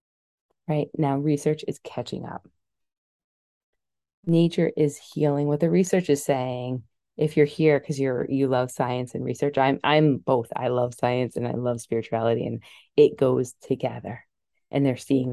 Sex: female